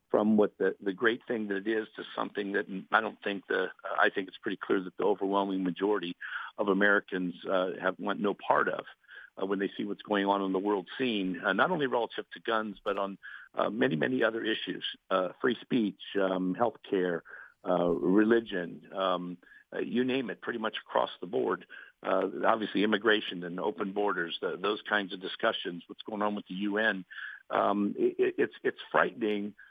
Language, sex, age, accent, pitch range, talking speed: English, male, 50-69, American, 95-110 Hz, 190 wpm